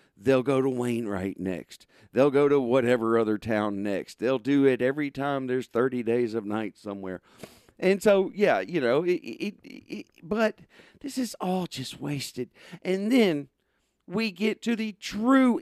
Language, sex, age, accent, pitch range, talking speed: English, male, 50-69, American, 120-165 Hz, 175 wpm